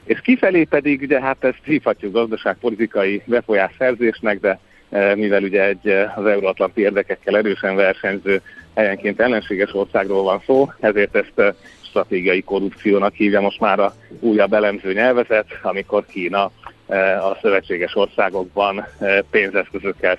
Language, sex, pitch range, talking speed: Hungarian, male, 95-115 Hz, 120 wpm